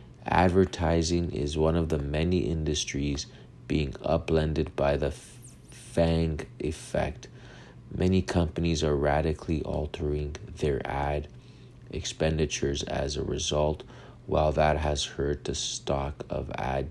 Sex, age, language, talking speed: male, 30-49, English, 115 wpm